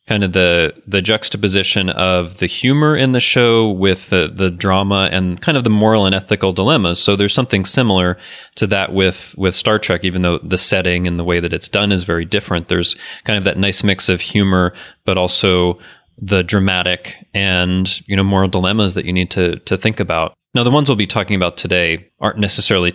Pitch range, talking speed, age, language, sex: 90-105 Hz, 210 wpm, 20-39, English, male